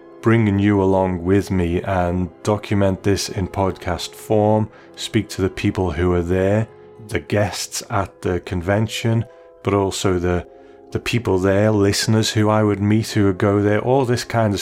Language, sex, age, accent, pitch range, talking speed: English, male, 30-49, British, 90-105 Hz, 170 wpm